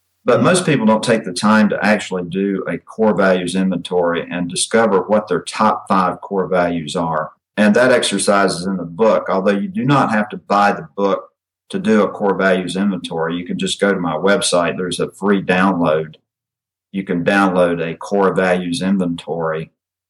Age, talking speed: 50-69, 190 wpm